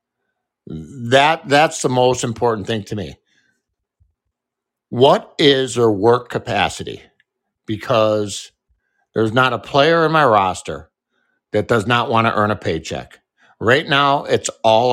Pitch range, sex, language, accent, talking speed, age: 115-165 Hz, male, English, American, 135 wpm, 60-79